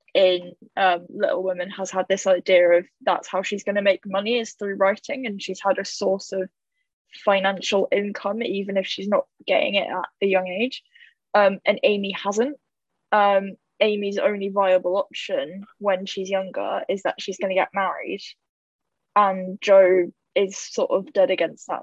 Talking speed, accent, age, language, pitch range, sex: 175 wpm, British, 10-29, English, 185-205 Hz, female